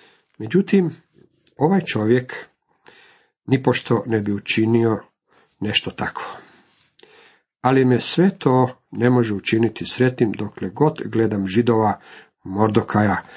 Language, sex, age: Croatian, male, 50-69